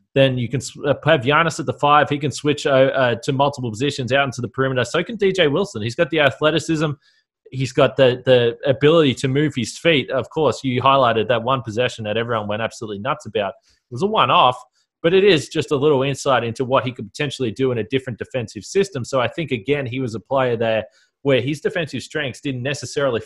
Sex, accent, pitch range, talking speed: male, Australian, 125-150 Hz, 225 wpm